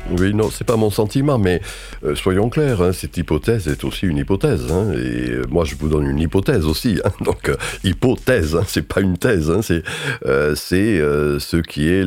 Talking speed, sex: 230 wpm, male